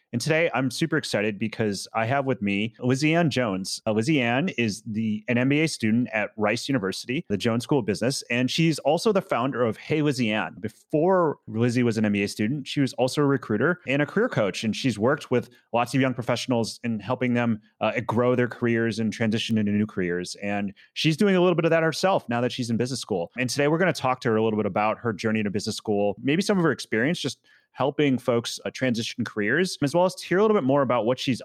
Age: 30-49